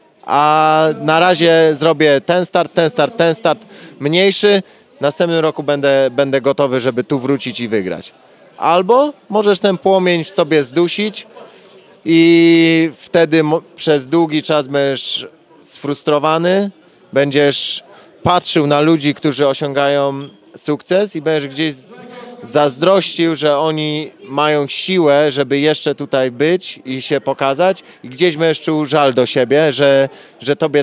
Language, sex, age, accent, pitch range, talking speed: Polish, male, 20-39, native, 145-175 Hz, 130 wpm